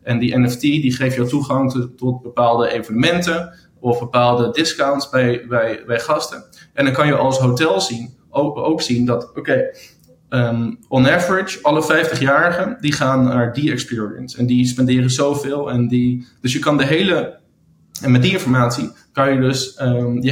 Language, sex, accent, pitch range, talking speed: Dutch, male, Dutch, 120-135 Hz, 175 wpm